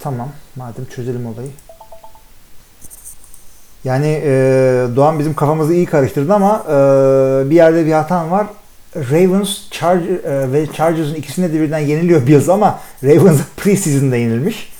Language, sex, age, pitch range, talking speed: Turkish, male, 50-69, 130-180 Hz, 125 wpm